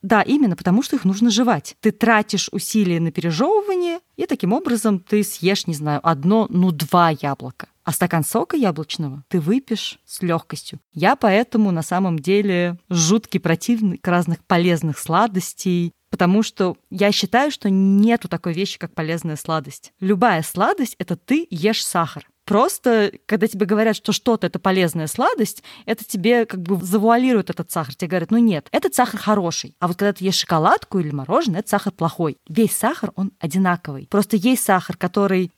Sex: female